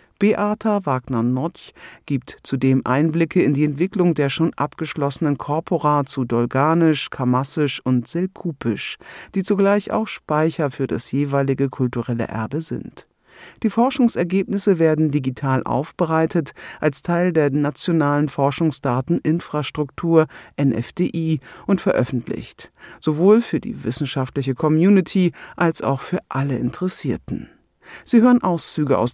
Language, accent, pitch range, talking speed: German, German, 130-170 Hz, 110 wpm